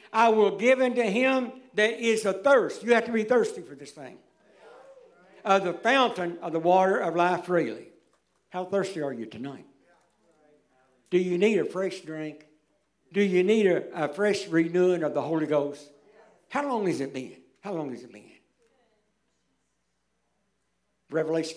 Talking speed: 165 wpm